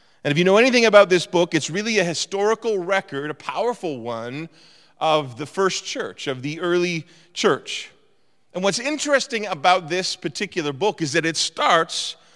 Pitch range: 155-195 Hz